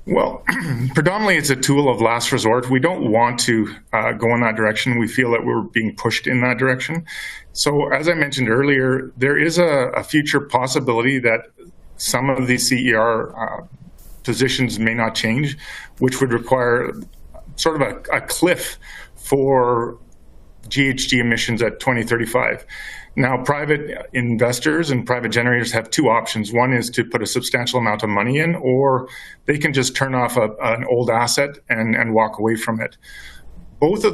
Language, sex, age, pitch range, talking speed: English, male, 40-59, 115-135 Hz, 170 wpm